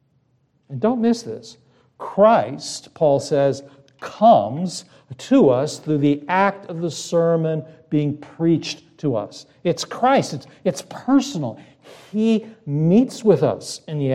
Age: 50-69